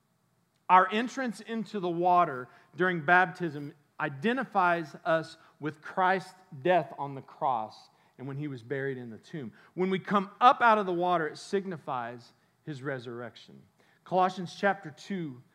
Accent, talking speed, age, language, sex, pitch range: American, 145 wpm, 40-59, English, male, 140-185 Hz